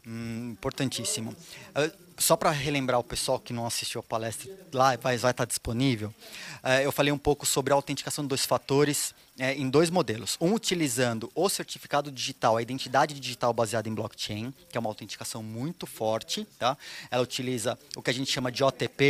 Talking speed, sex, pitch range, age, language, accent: 180 wpm, male, 125-150 Hz, 20-39, Portuguese, Brazilian